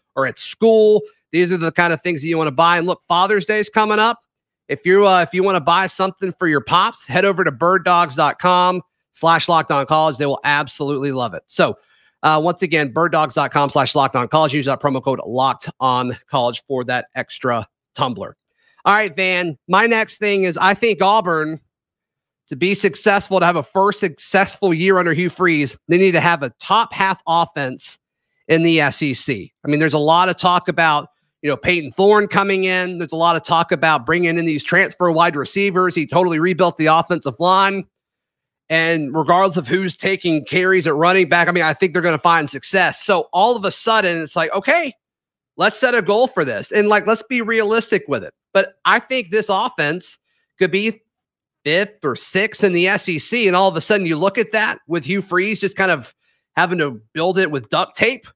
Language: English